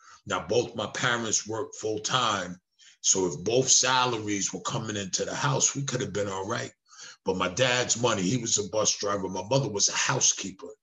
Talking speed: 200 wpm